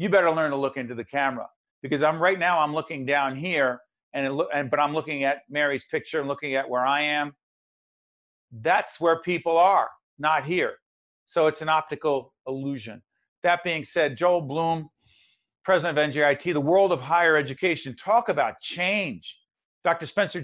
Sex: male